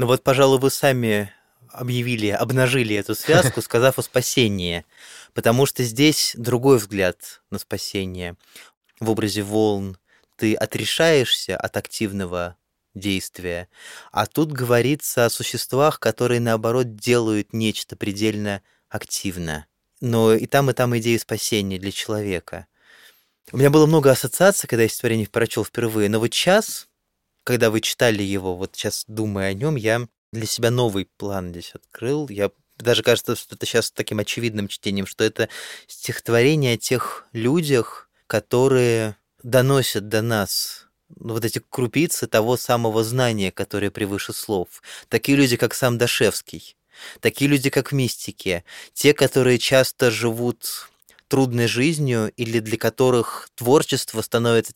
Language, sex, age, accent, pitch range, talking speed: Russian, male, 20-39, native, 105-125 Hz, 135 wpm